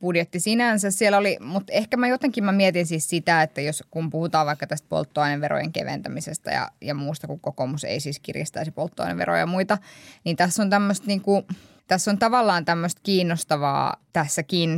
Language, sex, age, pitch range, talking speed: Finnish, female, 20-39, 155-200 Hz, 175 wpm